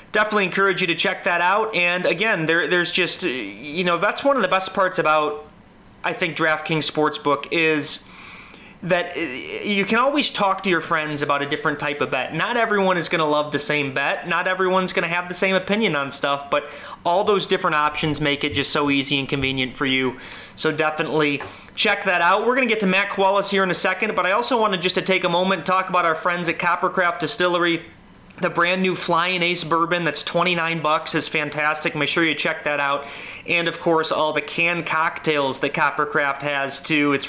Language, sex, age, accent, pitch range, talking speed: English, male, 30-49, American, 150-185 Hz, 215 wpm